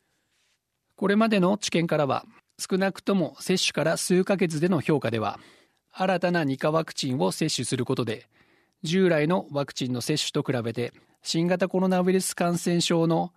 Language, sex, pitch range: Japanese, male, 130-180 Hz